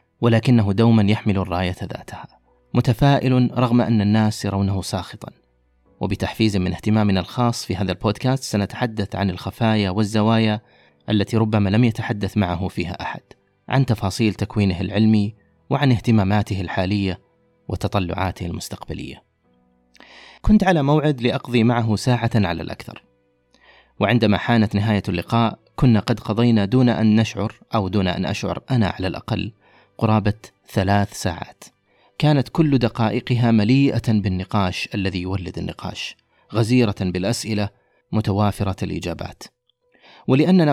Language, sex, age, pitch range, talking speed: Arabic, male, 30-49, 95-120 Hz, 115 wpm